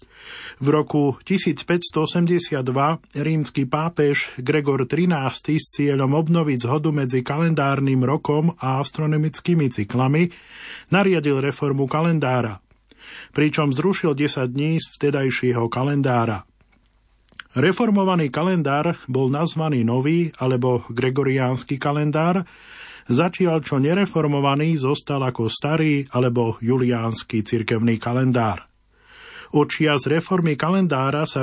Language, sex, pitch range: Slovak, male, 130-155 Hz